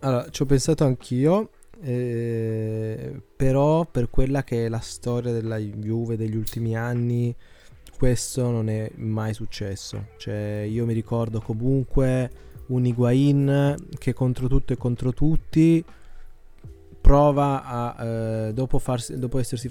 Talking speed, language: 125 wpm, Italian